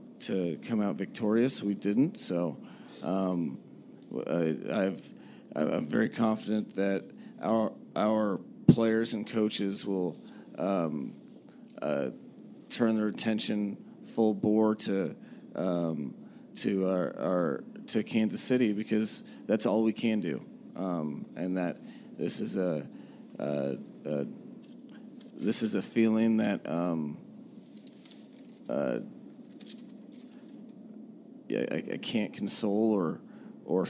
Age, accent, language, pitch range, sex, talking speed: 30-49, American, English, 95-140 Hz, male, 110 wpm